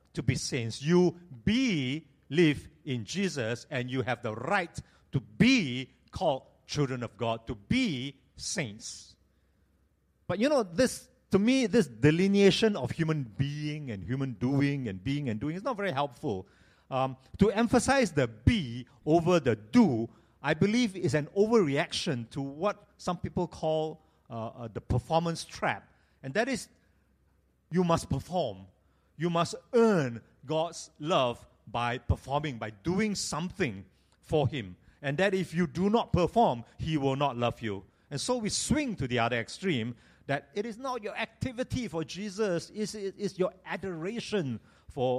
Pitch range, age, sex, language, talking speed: 115-185 Hz, 50-69, male, English, 155 wpm